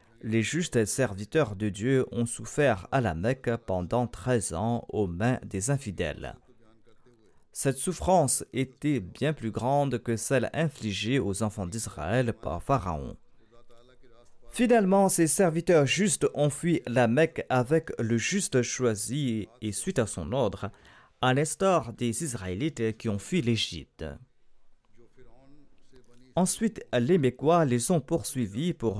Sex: male